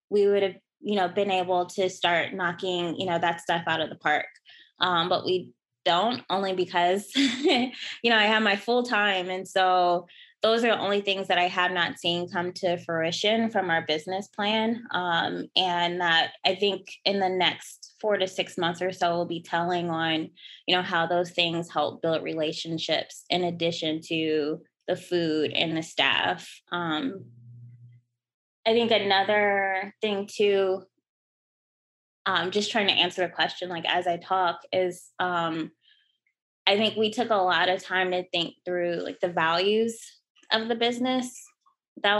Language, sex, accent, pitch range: English, female, American, 170-205 Hz